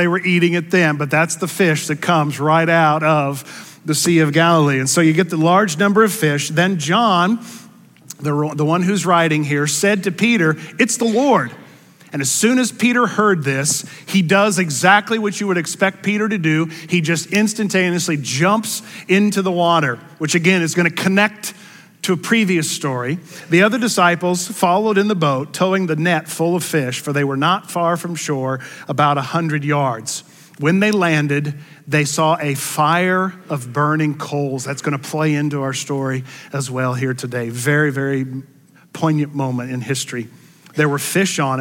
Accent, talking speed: American, 185 wpm